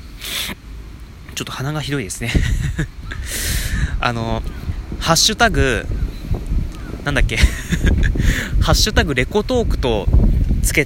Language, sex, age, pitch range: Japanese, male, 20-39, 95-145 Hz